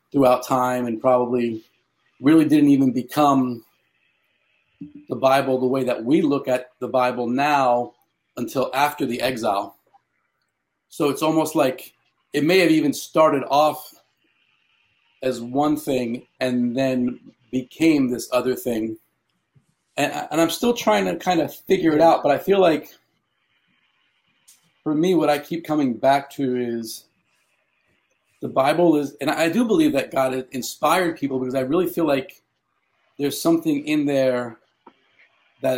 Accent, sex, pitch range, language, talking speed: American, male, 125-155 Hz, English, 145 wpm